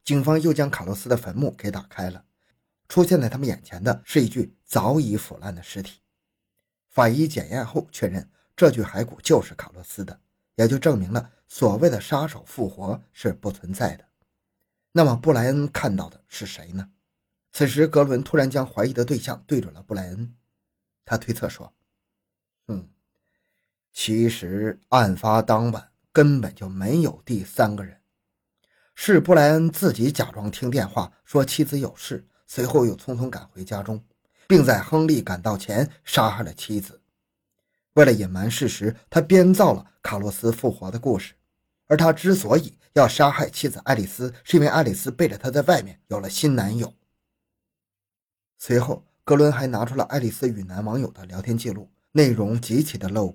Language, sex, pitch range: Chinese, male, 100-140 Hz